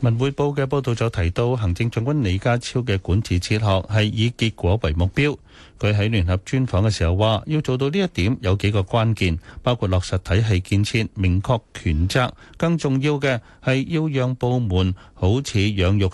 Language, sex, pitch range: Chinese, male, 95-125 Hz